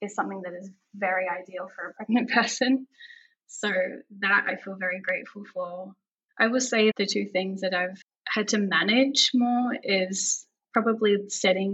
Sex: female